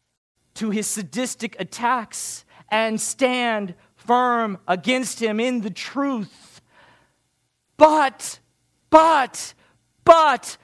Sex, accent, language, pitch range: male, American, English, 195-275 Hz